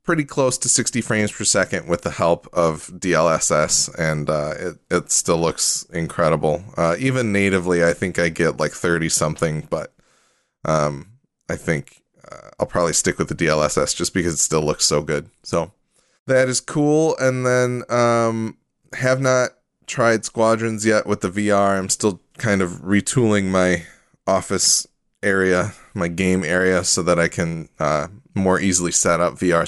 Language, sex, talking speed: English, male, 170 wpm